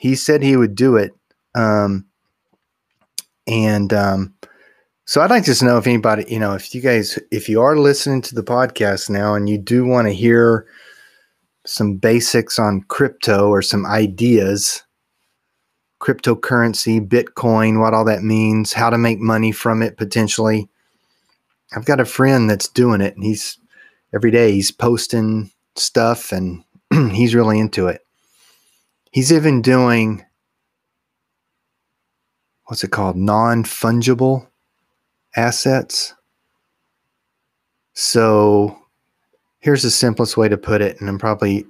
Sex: male